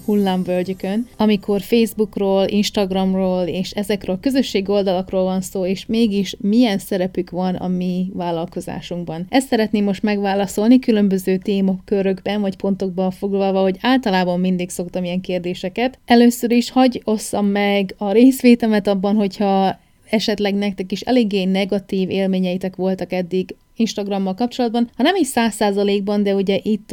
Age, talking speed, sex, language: 30-49, 135 wpm, female, Hungarian